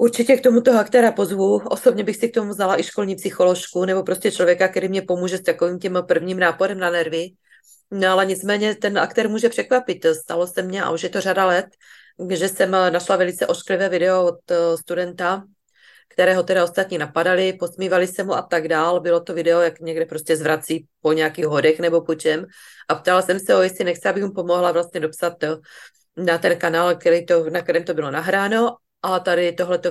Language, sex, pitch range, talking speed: Czech, female, 175-225 Hz, 200 wpm